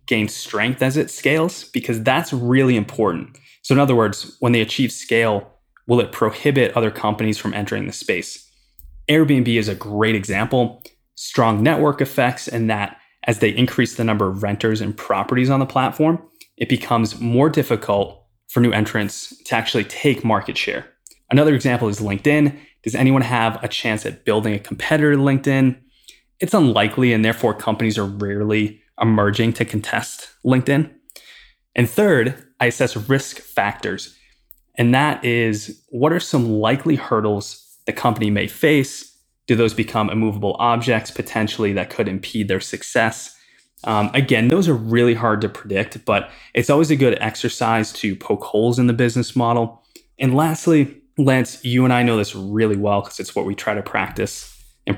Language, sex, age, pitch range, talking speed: English, male, 20-39, 105-130 Hz, 170 wpm